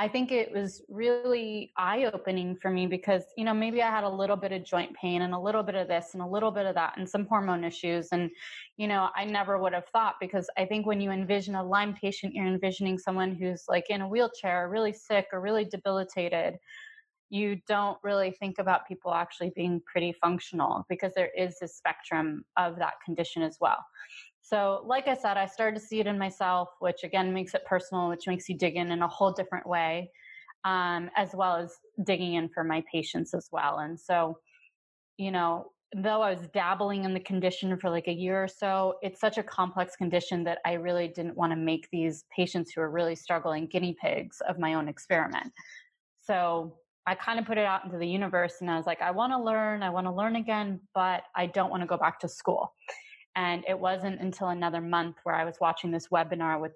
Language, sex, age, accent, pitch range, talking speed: English, female, 20-39, American, 170-200 Hz, 220 wpm